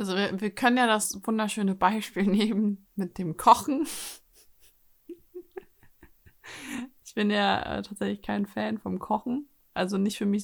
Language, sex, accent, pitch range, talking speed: German, female, German, 185-225 Hz, 145 wpm